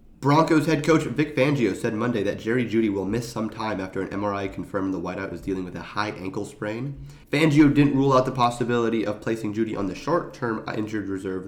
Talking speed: 215 wpm